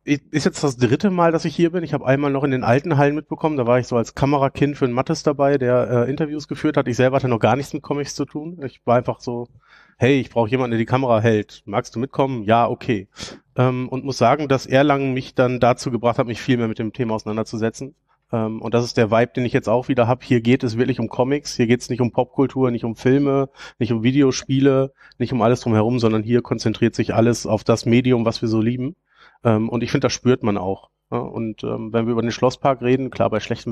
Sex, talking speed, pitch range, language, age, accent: male, 255 wpm, 115-135 Hz, German, 30-49, German